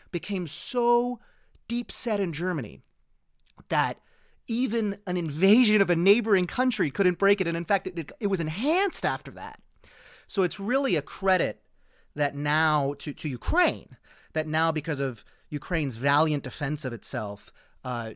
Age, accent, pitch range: 30-49, American, 125-170 Hz